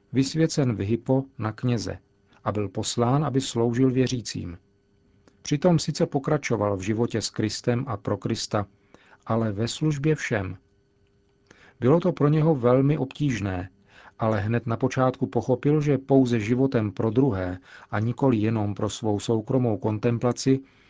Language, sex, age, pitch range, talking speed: Czech, male, 40-59, 105-135 Hz, 140 wpm